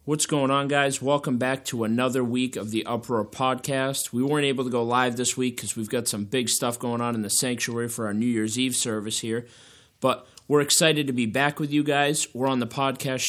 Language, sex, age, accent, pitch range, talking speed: English, male, 30-49, American, 120-145 Hz, 235 wpm